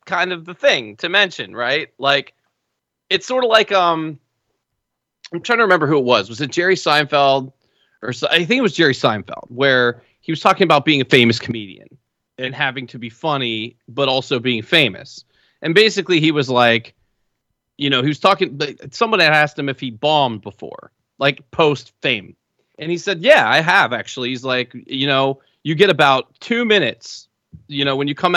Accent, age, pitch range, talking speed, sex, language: American, 30-49, 130-160 Hz, 195 wpm, male, English